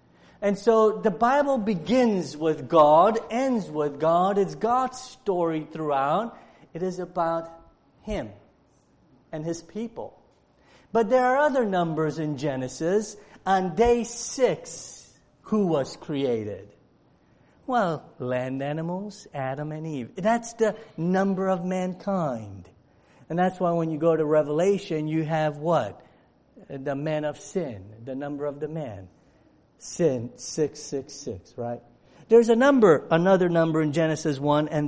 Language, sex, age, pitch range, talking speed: English, male, 50-69, 150-205 Hz, 130 wpm